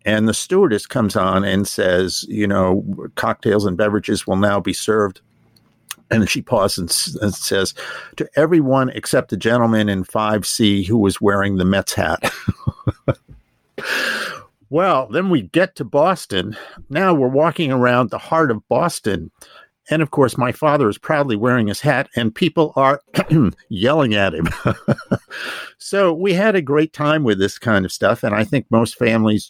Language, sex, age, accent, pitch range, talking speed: English, male, 50-69, American, 105-140 Hz, 165 wpm